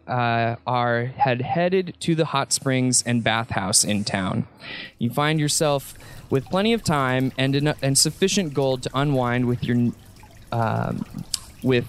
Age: 20-39